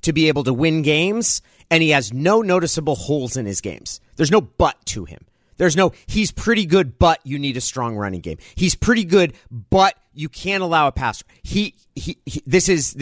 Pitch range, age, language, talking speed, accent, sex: 105-160 Hz, 40-59, English, 215 wpm, American, male